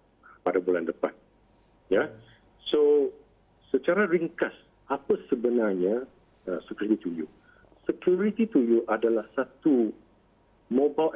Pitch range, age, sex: 115-165 Hz, 50-69, male